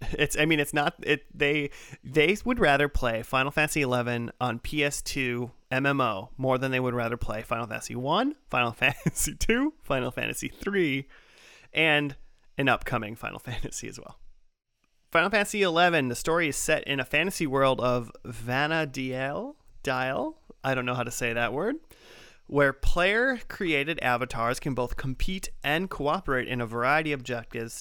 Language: English